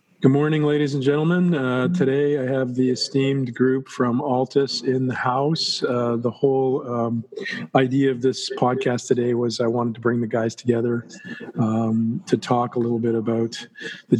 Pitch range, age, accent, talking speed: 120-140 Hz, 40-59, American, 180 wpm